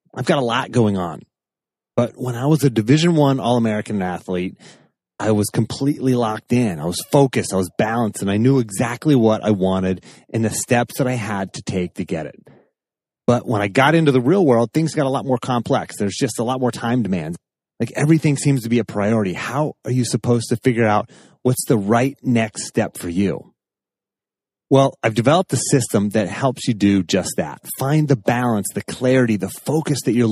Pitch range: 110-140 Hz